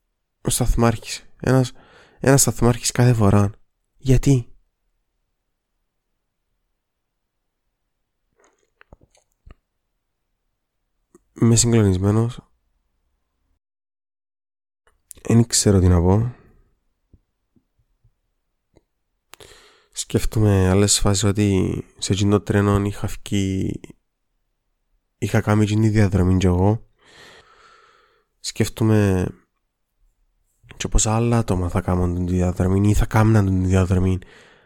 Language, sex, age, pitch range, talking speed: Greek, male, 20-39, 95-115 Hz, 75 wpm